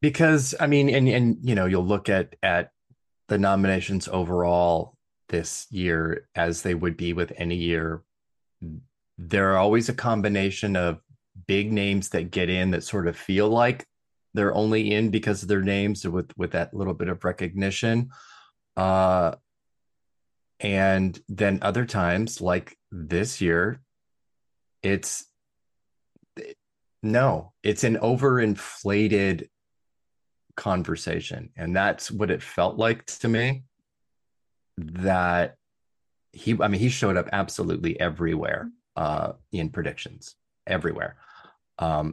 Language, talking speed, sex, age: English, 125 wpm, male, 30-49